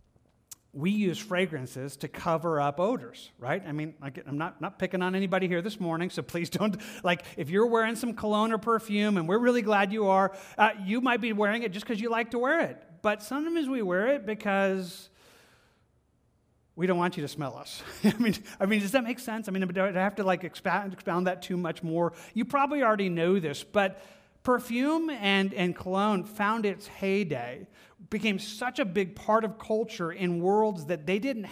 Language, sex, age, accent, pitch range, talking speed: English, male, 40-59, American, 180-220 Hz, 200 wpm